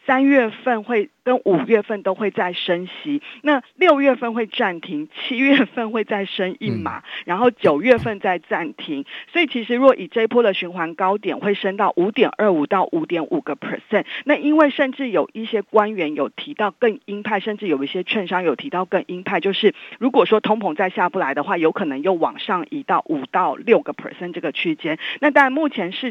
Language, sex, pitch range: Chinese, female, 185-255 Hz